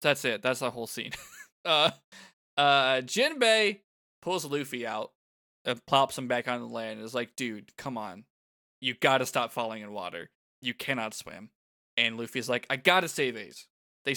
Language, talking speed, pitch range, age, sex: English, 185 wpm, 120-170 Hz, 20-39, male